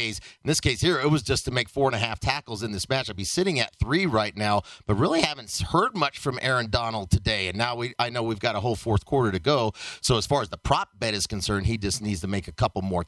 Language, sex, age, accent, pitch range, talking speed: English, male, 40-59, American, 110-145 Hz, 290 wpm